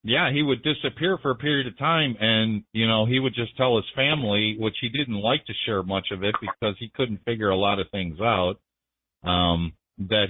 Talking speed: 220 wpm